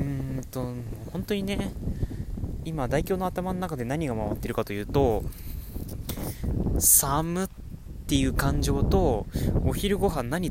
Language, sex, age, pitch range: Japanese, male, 20-39, 110-145 Hz